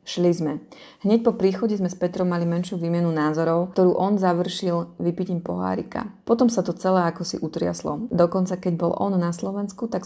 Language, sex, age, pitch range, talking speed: Slovak, female, 20-39, 170-210 Hz, 185 wpm